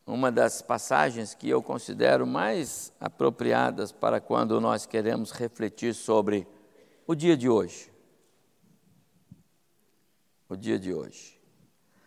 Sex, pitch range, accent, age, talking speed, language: male, 110-150 Hz, Brazilian, 60-79, 110 wpm, Portuguese